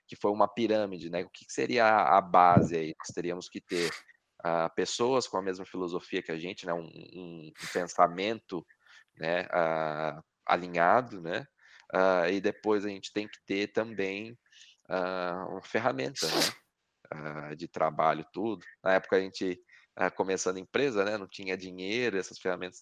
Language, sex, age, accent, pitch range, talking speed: Portuguese, male, 20-39, Brazilian, 85-110 Hz, 165 wpm